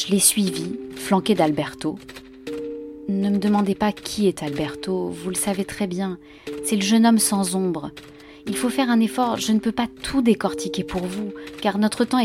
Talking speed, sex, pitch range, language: 195 wpm, female, 155-225 Hz, French